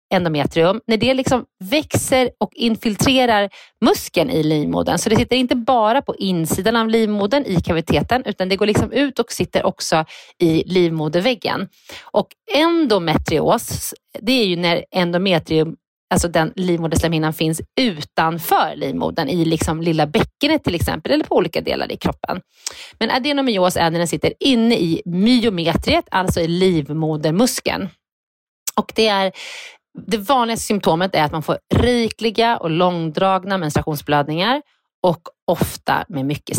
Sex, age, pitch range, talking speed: female, 30-49, 165-235 Hz, 140 wpm